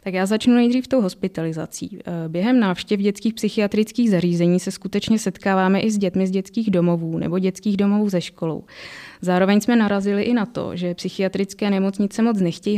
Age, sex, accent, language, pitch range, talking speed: 20-39, female, native, Czech, 180-210 Hz, 170 wpm